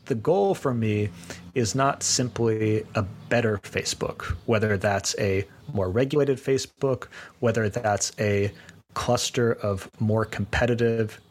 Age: 30-49